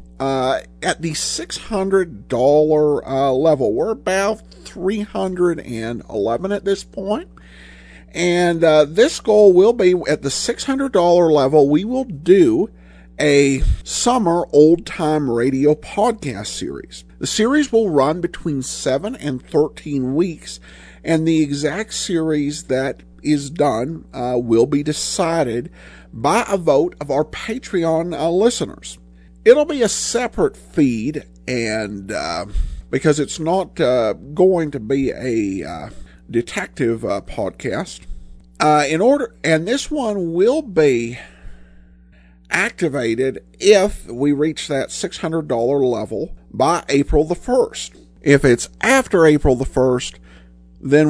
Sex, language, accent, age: male, English, American, 50-69